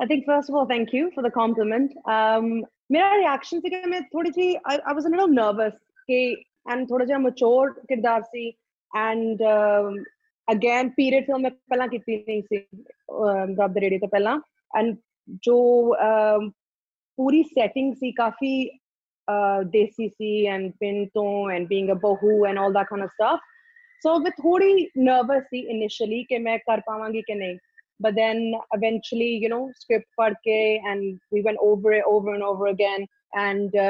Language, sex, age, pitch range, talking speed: Punjabi, female, 20-39, 200-250 Hz, 165 wpm